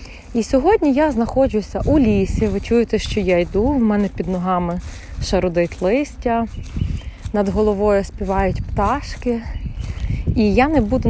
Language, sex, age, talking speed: Ukrainian, female, 20-39, 135 wpm